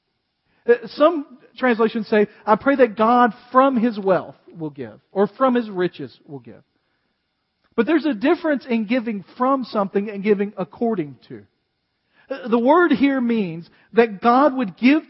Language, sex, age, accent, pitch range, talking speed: English, male, 40-59, American, 180-245 Hz, 150 wpm